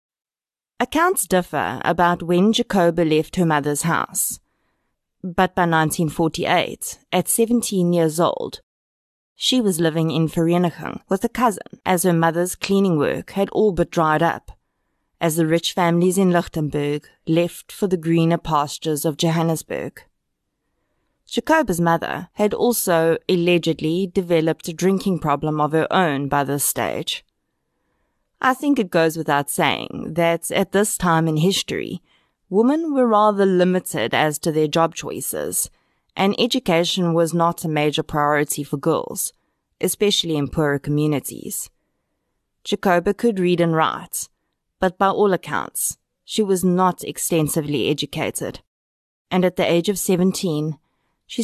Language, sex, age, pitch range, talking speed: English, female, 20-39, 160-190 Hz, 135 wpm